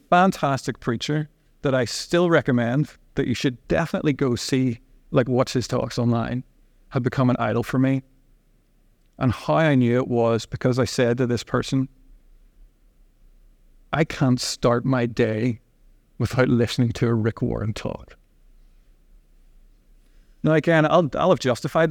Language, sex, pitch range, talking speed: English, male, 120-145 Hz, 145 wpm